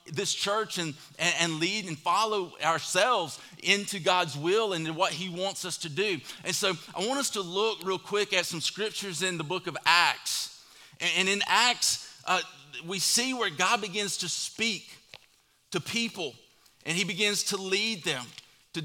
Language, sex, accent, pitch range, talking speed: English, male, American, 170-200 Hz, 175 wpm